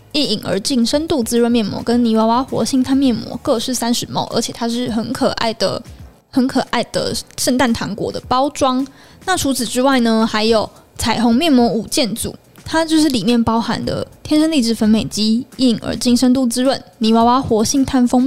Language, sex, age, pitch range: Chinese, female, 20-39, 225-265 Hz